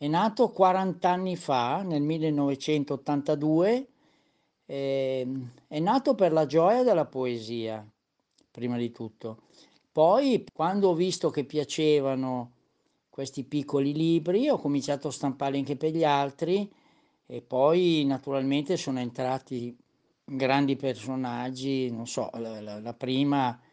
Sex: male